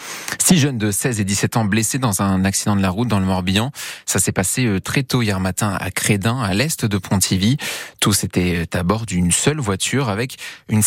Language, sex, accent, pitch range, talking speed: French, male, French, 95-120 Hz, 215 wpm